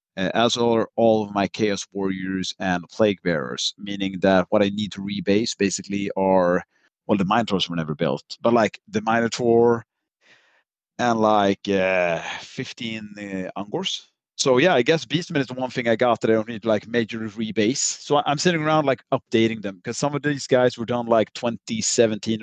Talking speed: 185 wpm